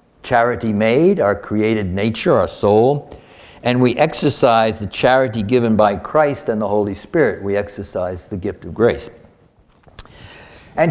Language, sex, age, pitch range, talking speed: English, male, 60-79, 95-120 Hz, 145 wpm